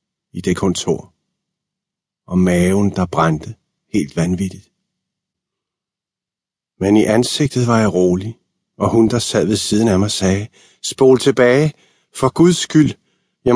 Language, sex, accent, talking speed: Danish, male, native, 135 wpm